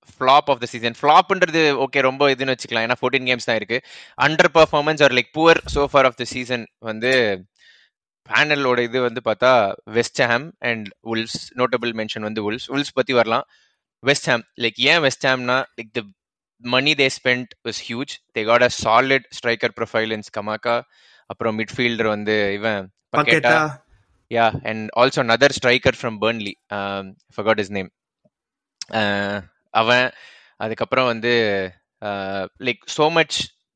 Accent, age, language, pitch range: native, 20-39, Tamil, 110-135 Hz